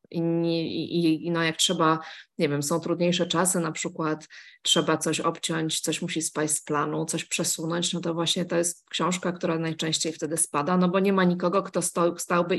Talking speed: 195 wpm